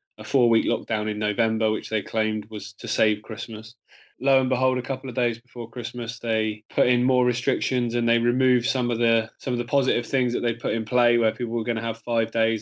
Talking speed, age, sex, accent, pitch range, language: 240 wpm, 20-39, male, British, 110-120 Hz, English